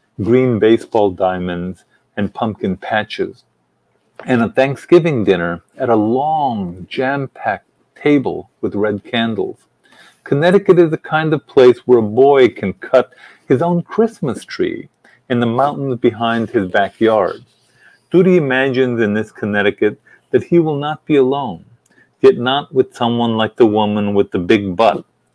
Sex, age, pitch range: male, 40-59, 105-160 Hz